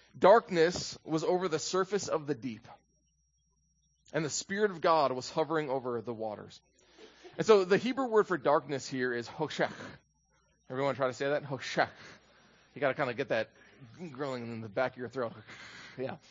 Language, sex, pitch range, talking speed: English, male, 130-180 Hz, 180 wpm